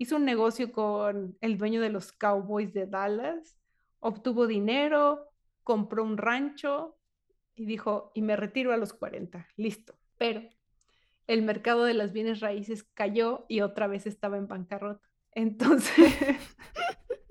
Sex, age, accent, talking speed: female, 30-49, Mexican, 140 wpm